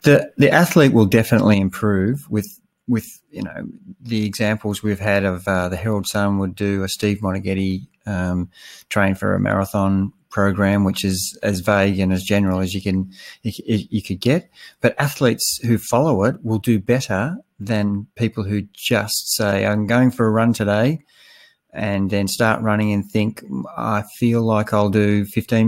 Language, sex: English, male